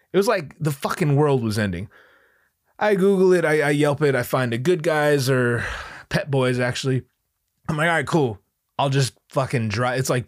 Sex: male